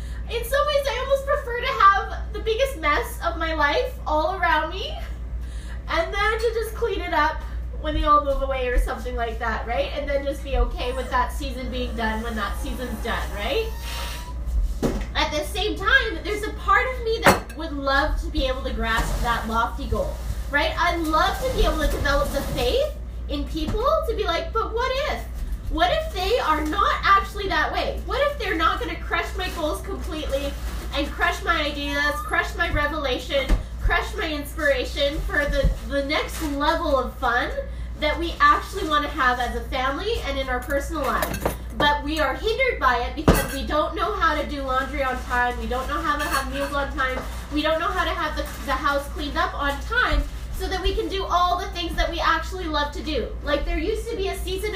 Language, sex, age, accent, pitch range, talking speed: English, female, 20-39, American, 270-360 Hz, 215 wpm